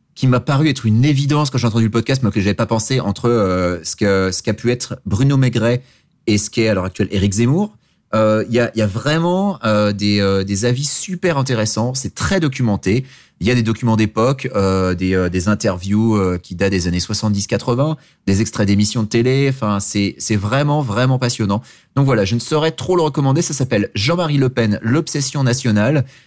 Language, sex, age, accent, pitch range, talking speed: French, male, 30-49, French, 105-130 Hz, 210 wpm